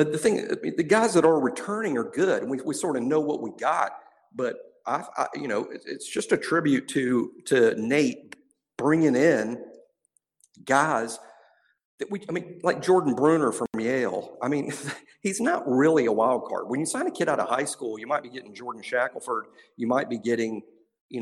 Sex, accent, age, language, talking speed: male, American, 50-69, English, 195 wpm